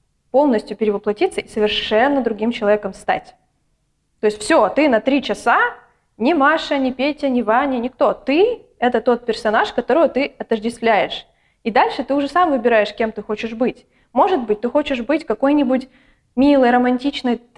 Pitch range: 225-275 Hz